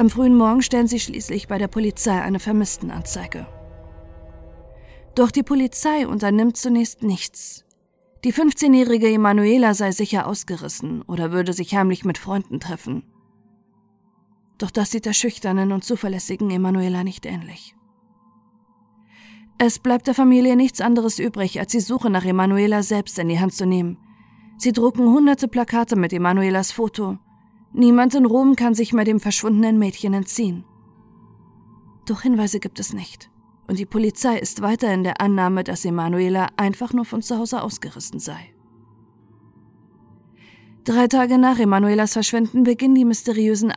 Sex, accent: female, German